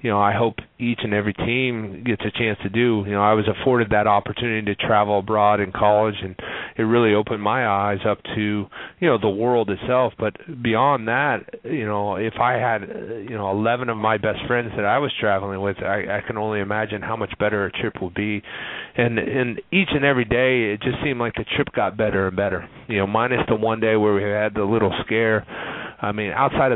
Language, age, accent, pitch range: English, 30-49, American, 105-120 Hz